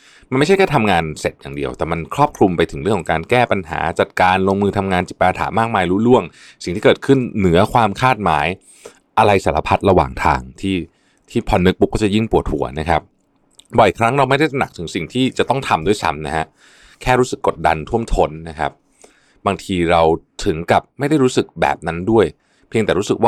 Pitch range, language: 85-115 Hz, Thai